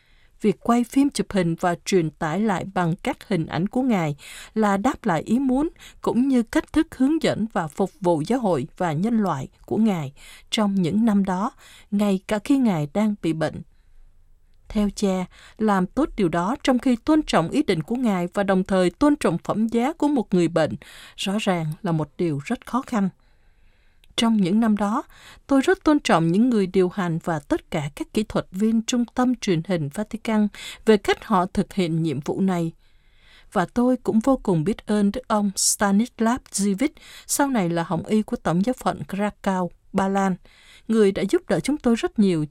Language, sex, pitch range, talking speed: Vietnamese, female, 170-230 Hz, 200 wpm